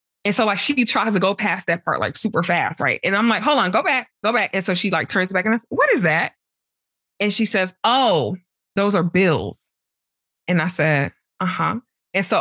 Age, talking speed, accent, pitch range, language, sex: 20-39, 235 wpm, American, 160-205 Hz, English, female